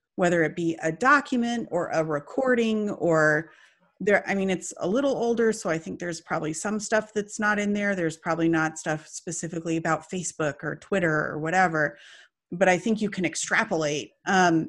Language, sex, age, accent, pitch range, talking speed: English, female, 30-49, American, 170-225 Hz, 185 wpm